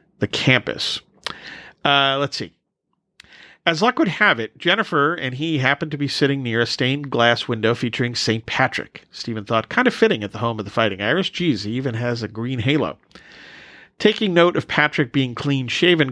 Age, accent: 40-59, American